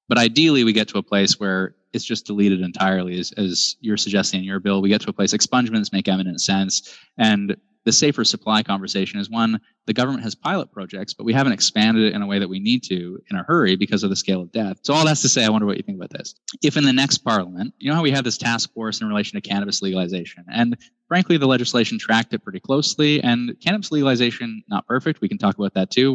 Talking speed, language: 250 wpm, English